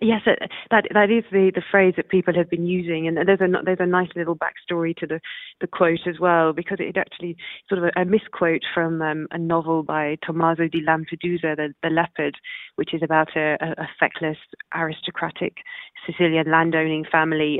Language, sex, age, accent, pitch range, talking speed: English, female, 20-39, British, 155-175 Hz, 190 wpm